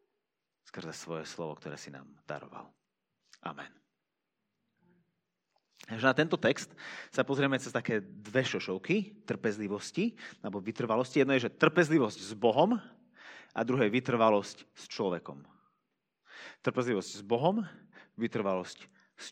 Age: 30-49